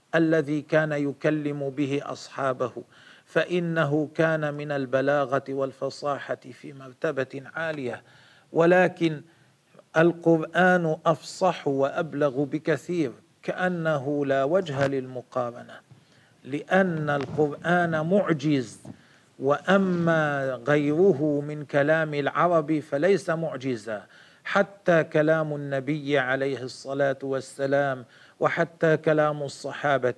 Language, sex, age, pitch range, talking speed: Arabic, male, 40-59, 140-170 Hz, 80 wpm